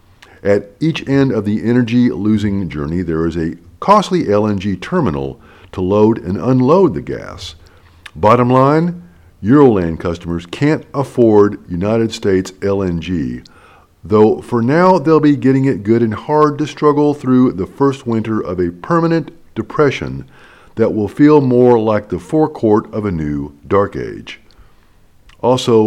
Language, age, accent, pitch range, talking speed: English, 50-69, American, 90-130 Hz, 140 wpm